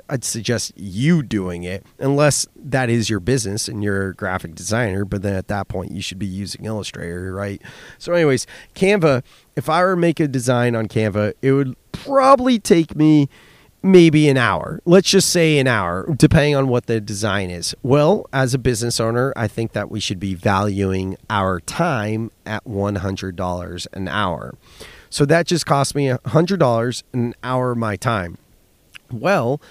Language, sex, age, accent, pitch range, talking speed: English, male, 30-49, American, 105-145 Hz, 175 wpm